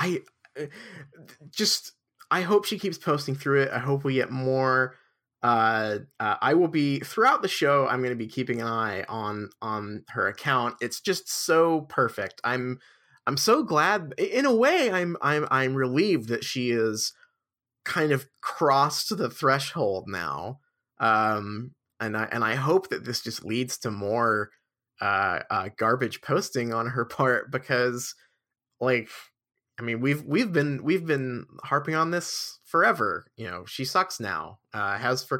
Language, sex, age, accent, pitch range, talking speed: English, male, 20-39, American, 110-145 Hz, 165 wpm